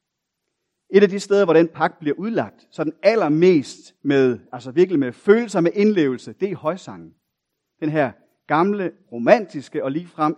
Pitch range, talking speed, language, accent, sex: 155-215 Hz, 160 wpm, Danish, native, male